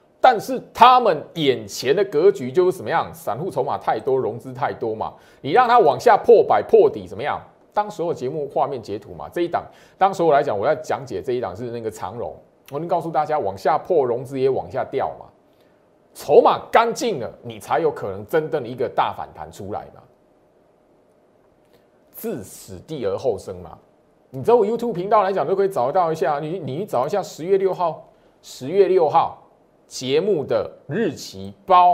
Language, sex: Chinese, male